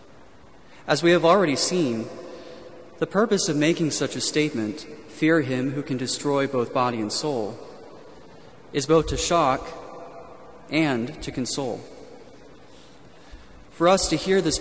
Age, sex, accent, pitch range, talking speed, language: 30-49, male, American, 130-160 Hz, 135 wpm, English